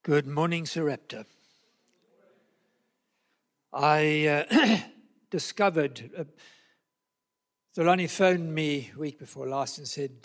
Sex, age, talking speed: male, 60-79, 100 wpm